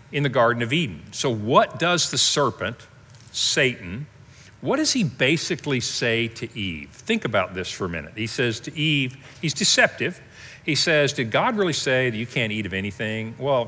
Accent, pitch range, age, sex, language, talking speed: American, 110-145 Hz, 50-69, male, English, 190 wpm